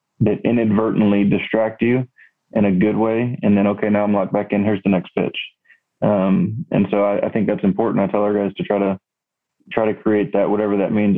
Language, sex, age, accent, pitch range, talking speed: English, male, 20-39, American, 100-105 Hz, 225 wpm